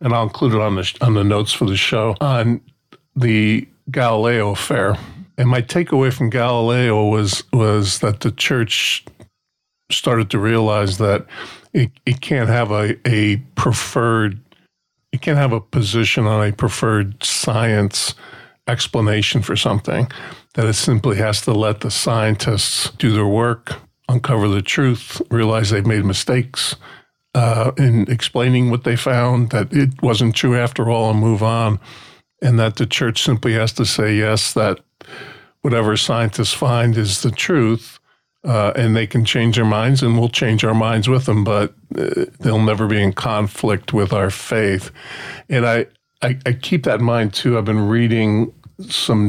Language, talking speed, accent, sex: English, 165 wpm, American, male